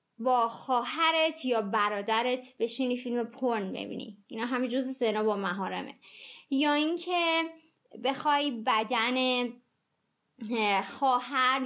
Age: 20-39